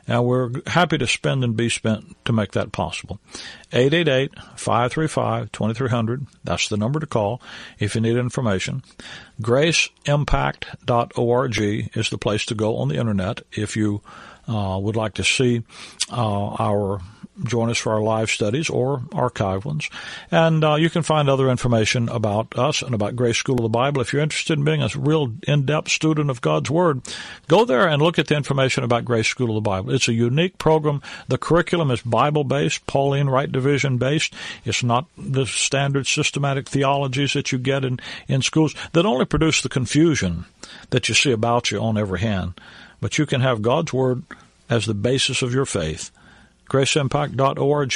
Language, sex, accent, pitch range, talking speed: English, male, American, 110-140 Hz, 175 wpm